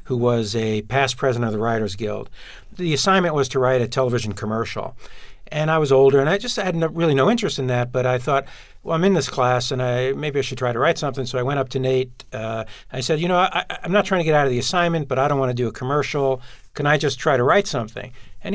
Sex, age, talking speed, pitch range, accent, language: male, 50-69, 275 wpm, 120-140 Hz, American, English